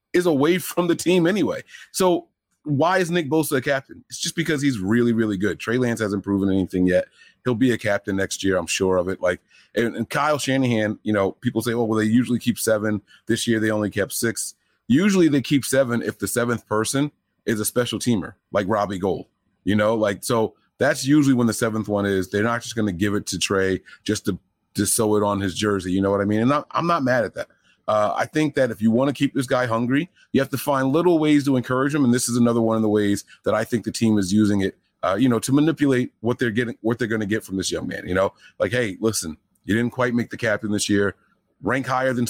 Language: English